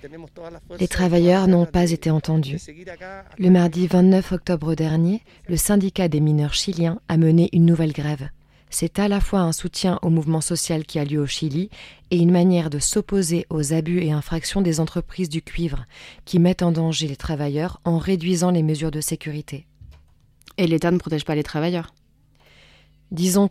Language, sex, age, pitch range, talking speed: French, female, 20-39, 155-180 Hz, 175 wpm